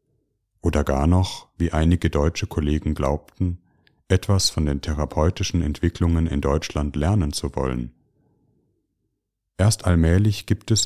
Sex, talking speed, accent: male, 120 wpm, German